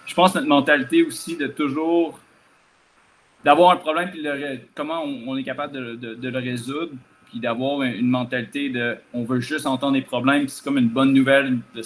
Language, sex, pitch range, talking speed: French, male, 125-145 Hz, 190 wpm